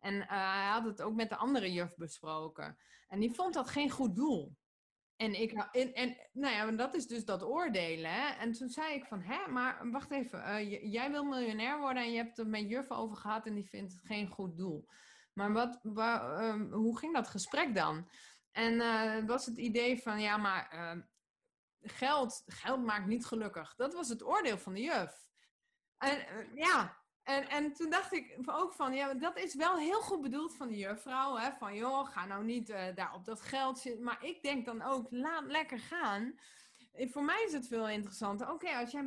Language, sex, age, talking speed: Dutch, female, 20-39, 220 wpm